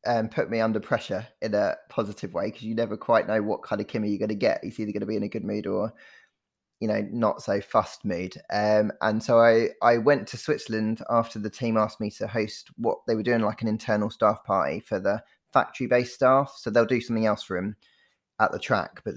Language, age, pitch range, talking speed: English, 20-39, 105-120 Hz, 240 wpm